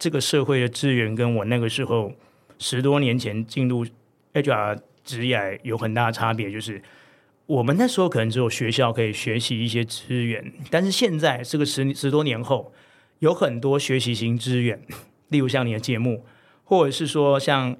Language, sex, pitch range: Chinese, male, 115-140 Hz